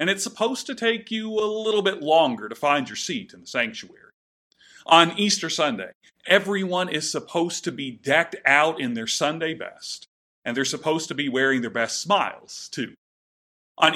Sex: male